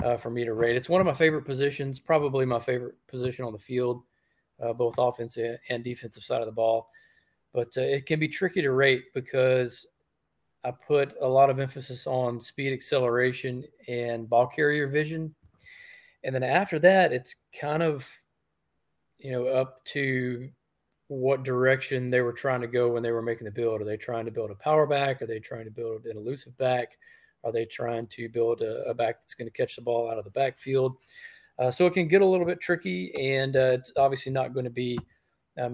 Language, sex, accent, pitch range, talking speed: English, male, American, 120-140 Hz, 210 wpm